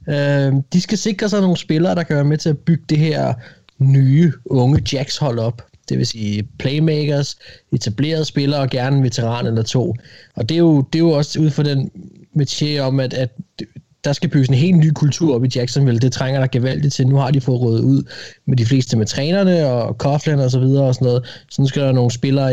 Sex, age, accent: male, 20-39, native